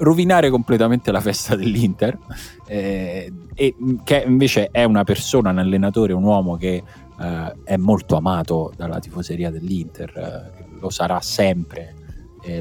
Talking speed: 140 wpm